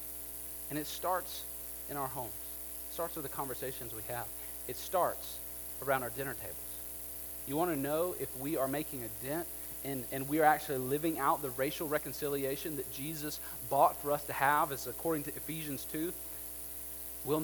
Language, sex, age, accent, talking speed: English, male, 30-49, American, 180 wpm